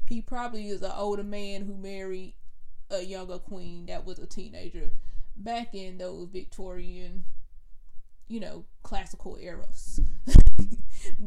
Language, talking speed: English, 120 wpm